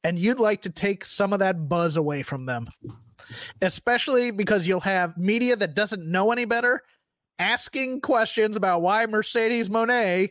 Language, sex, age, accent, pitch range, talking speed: English, male, 30-49, American, 175-225 Hz, 165 wpm